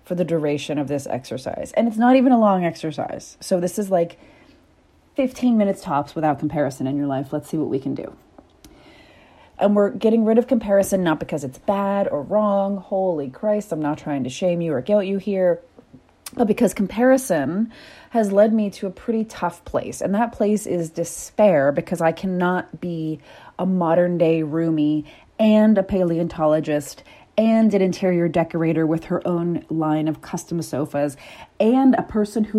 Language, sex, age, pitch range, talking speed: English, female, 30-49, 160-215 Hz, 180 wpm